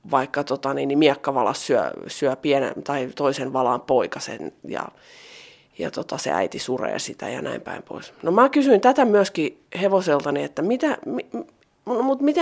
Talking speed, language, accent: 145 wpm, Finnish, native